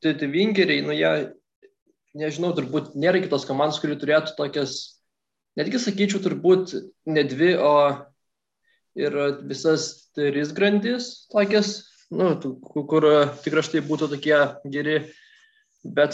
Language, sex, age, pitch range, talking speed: English, male, 20-39, 135-175 Hz, 120 wpm